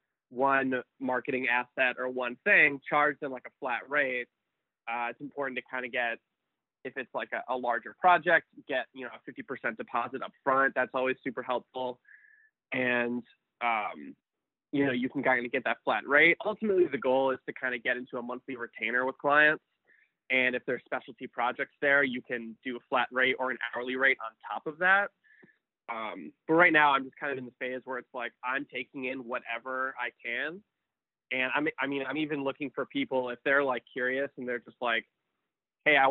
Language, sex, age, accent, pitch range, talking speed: English, male, 20-39, American, 120-140 Hz, 205 wpm